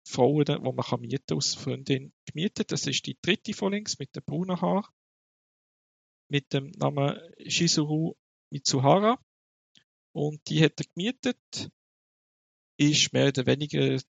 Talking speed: 130 wpm